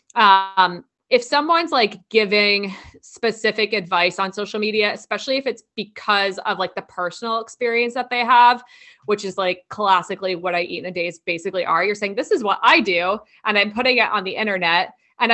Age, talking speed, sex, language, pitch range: 20-39, 195 wpm, female, English, 190-230 Hz